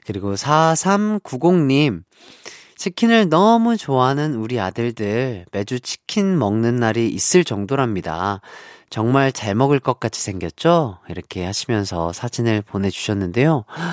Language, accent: Korean, native